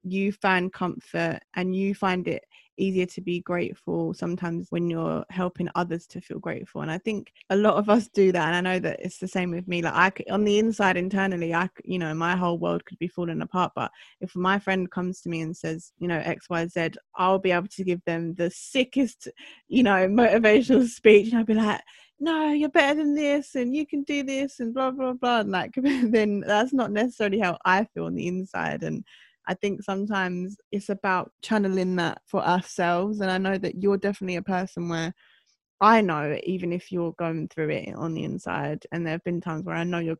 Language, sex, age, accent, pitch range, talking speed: English, female, 20-39, British, 170-205 Hz, 220 wpm